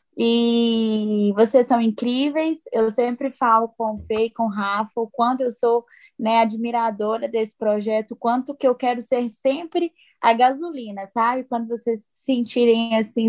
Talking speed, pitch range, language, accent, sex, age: 155 wpm, 225-255 Hz, Portuguese, Brazilian, female, 10-29